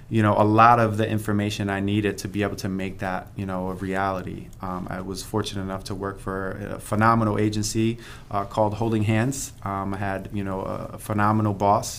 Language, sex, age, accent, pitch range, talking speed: English, male, 20-39, American, 100-110 Hz, 210 wpm